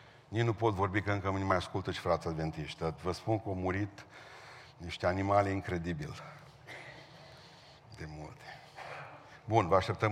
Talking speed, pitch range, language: 150 wpm, 105-145 Hz, Romanian